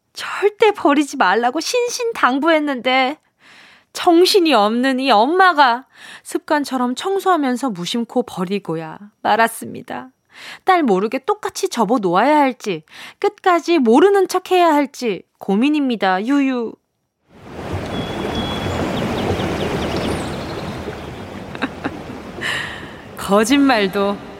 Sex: female